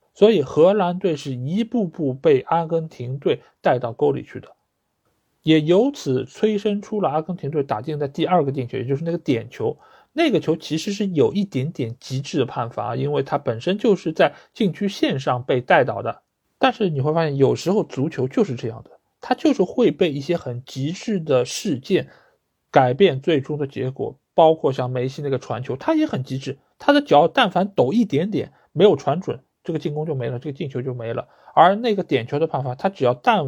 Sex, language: male, Chinese